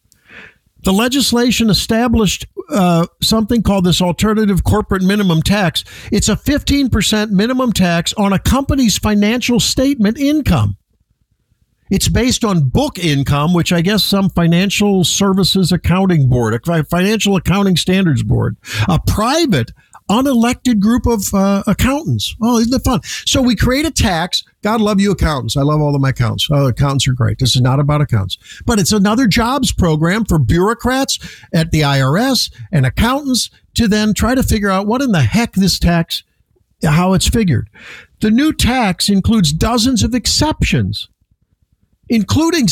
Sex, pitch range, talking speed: male, 140-230 Hz, 155 wpm